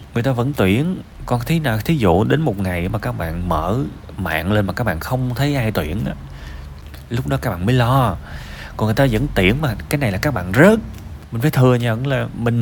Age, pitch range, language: 20-39, 85-130 Hz, Vietnamese